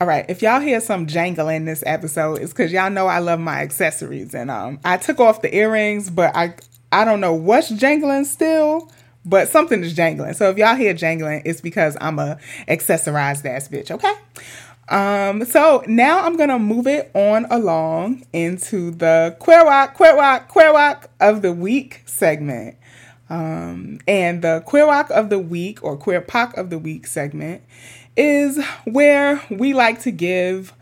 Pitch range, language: 160-225 Hz, English